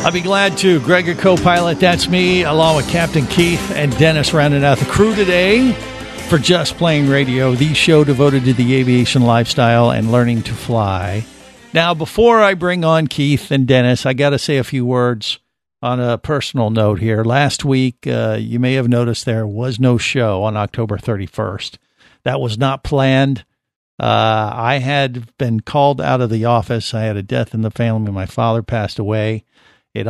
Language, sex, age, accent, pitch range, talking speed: English, male, 50-69, American, 110-140 Hz, 185 wpm